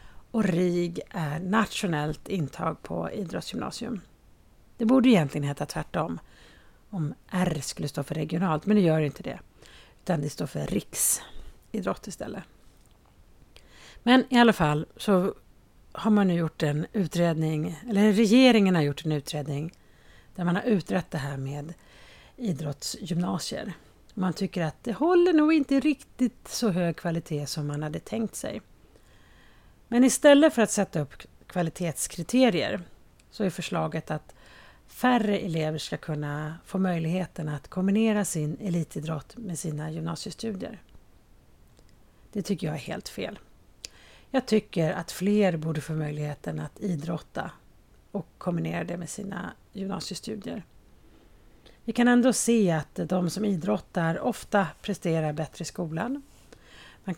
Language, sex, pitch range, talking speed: Swedish, female, 155-210 Hz, 135 wpm